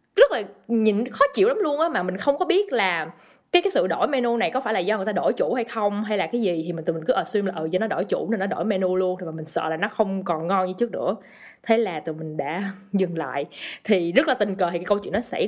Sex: female